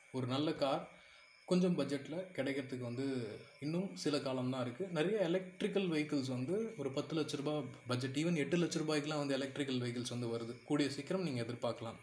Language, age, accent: Tamil, 20-39, native